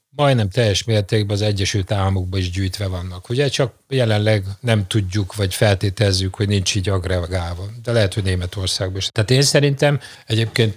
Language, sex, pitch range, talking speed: Hungarian, male, 100-125 Hz, 160 wpm